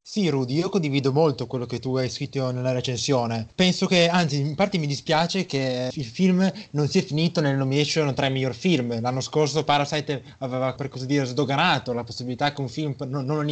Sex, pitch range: male, 140-180 Hz